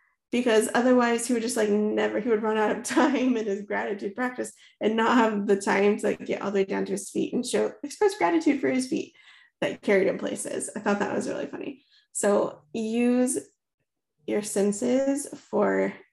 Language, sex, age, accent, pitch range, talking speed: English, female, 20-39, American, 200-250 Hz, 205 wpm